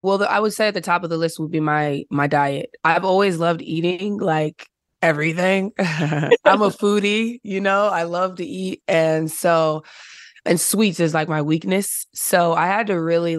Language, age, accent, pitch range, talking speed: English, 20-39, American, 155-190 Hz, 195 wpm